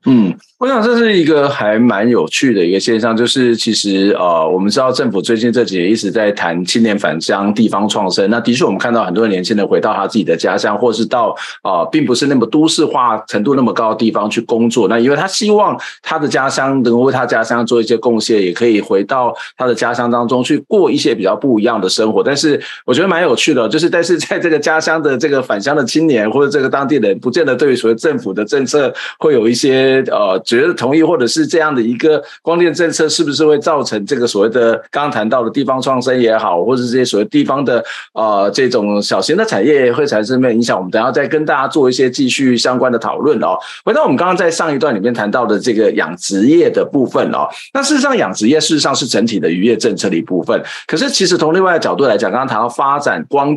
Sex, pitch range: male, 115-160 Hz